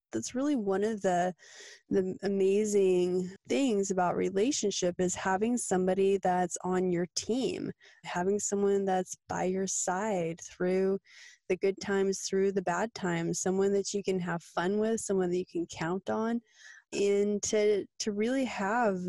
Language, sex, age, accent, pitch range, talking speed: English, female, 20-39, American, 180-210 Hz, 155 wpm